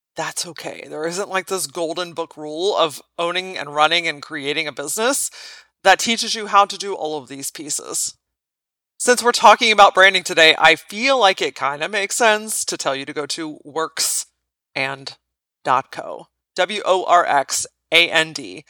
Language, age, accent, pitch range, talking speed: English, 30-49, American, 160-200 Hz, 155 wpm